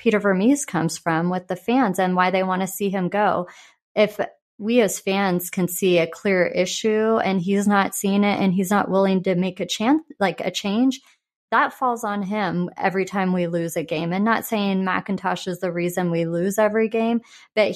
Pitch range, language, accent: 180-225 Hz, English, American